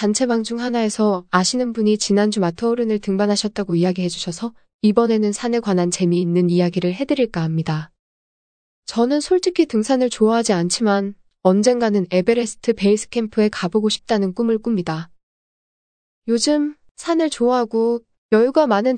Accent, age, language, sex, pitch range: native, 20-39, Korean, female, 180-235 Hz